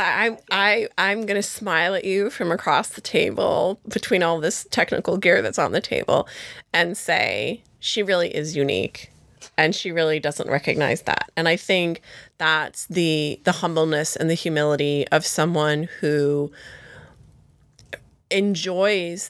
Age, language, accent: 30-49, English, American